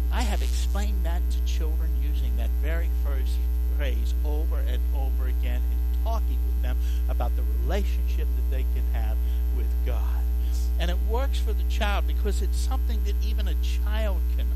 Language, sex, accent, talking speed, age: English, male, American, 175 wpm, 60-79